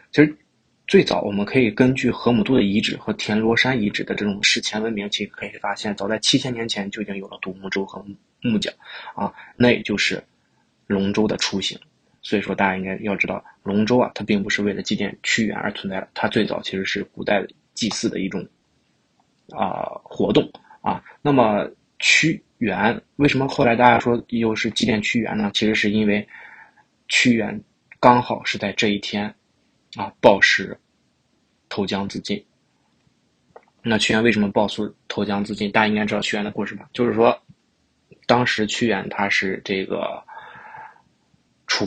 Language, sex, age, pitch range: Chinese, male, 20-39, 100-115 Hz